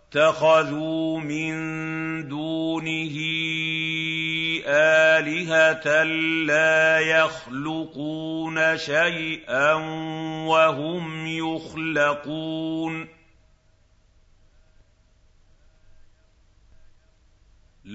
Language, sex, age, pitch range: Arabic, male, 50-69, 145-160 Hz